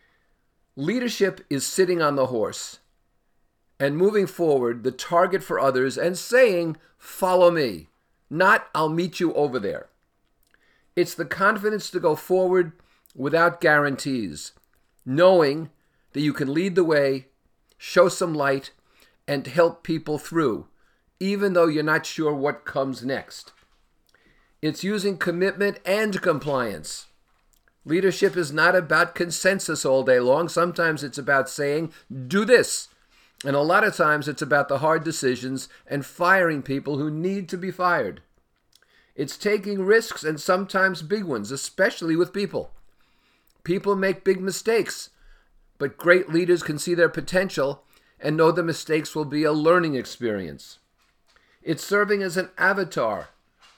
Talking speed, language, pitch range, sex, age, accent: 140 wpm, English, 145-185 Hz, male, 50-69, American